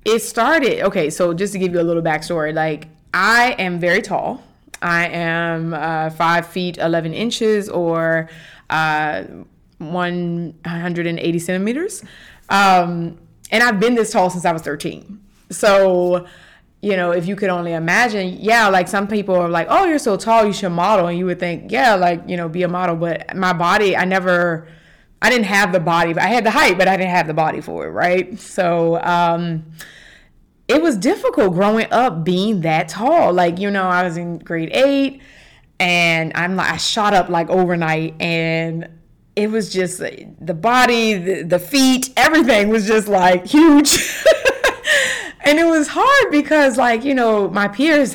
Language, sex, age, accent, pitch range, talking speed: English, female, 20-39, American, 170-215 Hz, 180 wpm